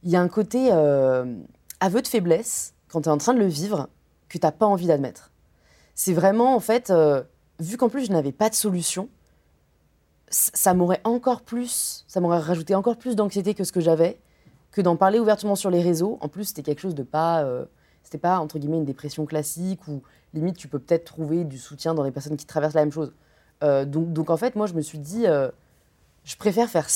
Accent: French